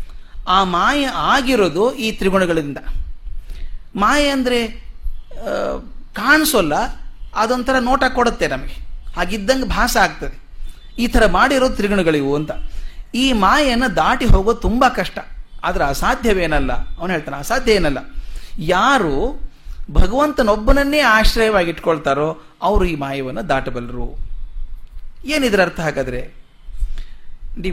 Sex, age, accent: male, 30-49, native